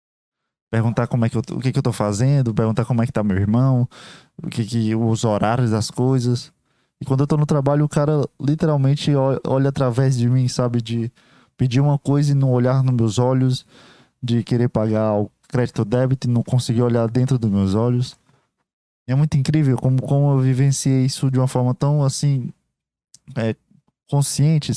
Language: Portuguese